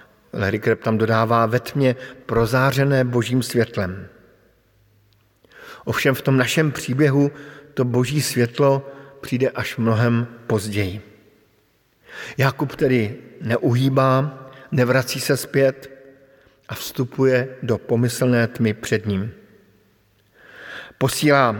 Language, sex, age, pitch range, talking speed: Slovak, male, 50-69, 110-135 Hz, 95 wpm